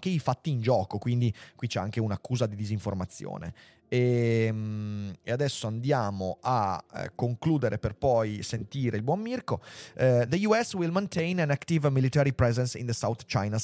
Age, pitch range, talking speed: 30-49, 115-145 Hz, 155 wpm